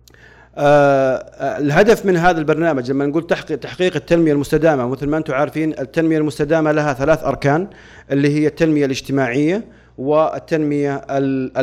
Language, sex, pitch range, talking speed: Arabic, male, 140-165 Hz, 125 wpm